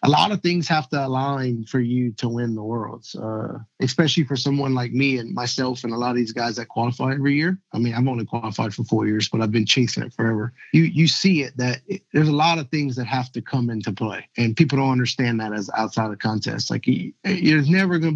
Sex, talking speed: male, 260 wpm